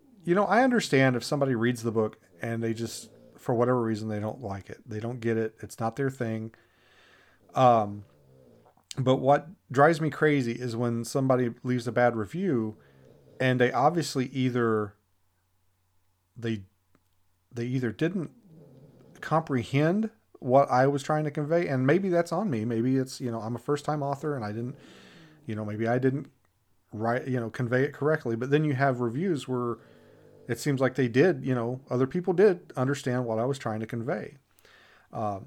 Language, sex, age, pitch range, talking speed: English, male, 40-59, 115-140 Hz, 180 wpm